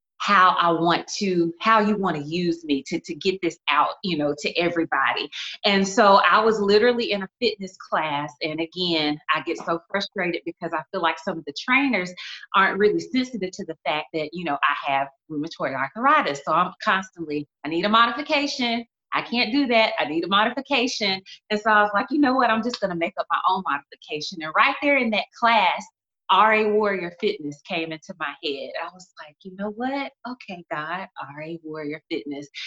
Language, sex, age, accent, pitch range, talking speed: English, female, 30-49, American, 170-230 Hz, 205 wpm